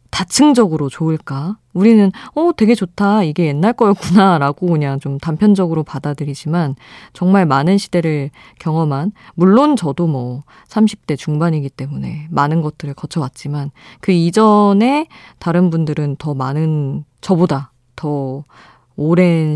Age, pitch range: 20-39, 140-195 Hz